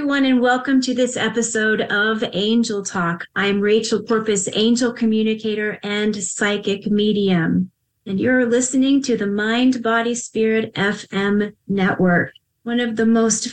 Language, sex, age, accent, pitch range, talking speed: English, female, 30-49, American, 190-235 Hz, 140 wpm